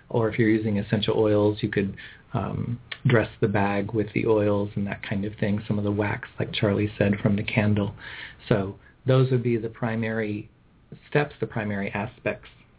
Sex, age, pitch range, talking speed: male, 40-59, 110-125 Hz, 190 wpm